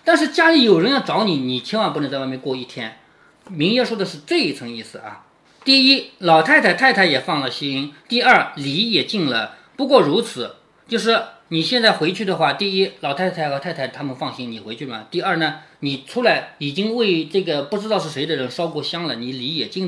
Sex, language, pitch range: male, Chinese, 155-260 Hz